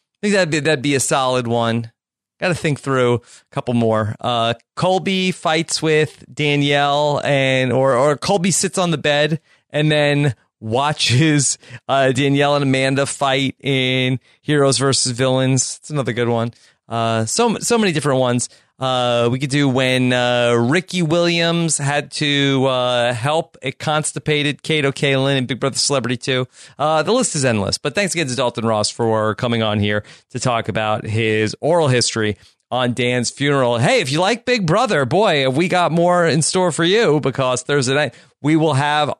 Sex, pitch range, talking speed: male, 120-160 Hz, 180 wpm